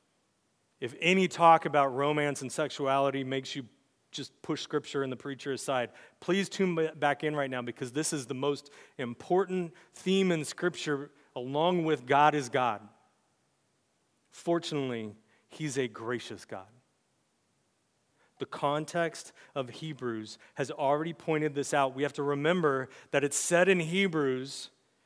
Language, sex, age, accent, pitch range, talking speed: English, male, 40-59, American, 130-185 Hz, 140 wpm